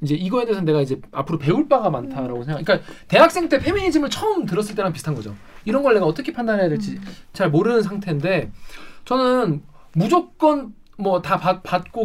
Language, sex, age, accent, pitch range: Korean, male, 20-39, native, 155-225 Hz